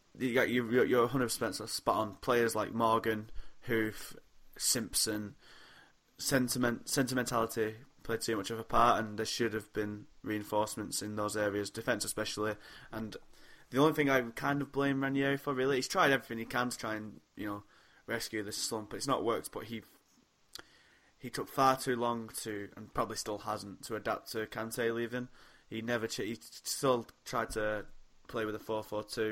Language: English